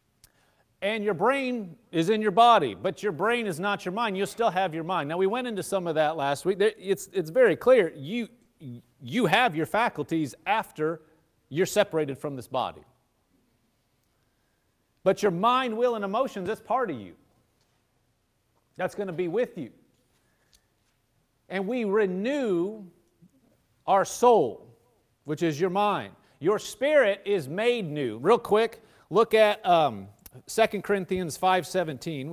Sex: male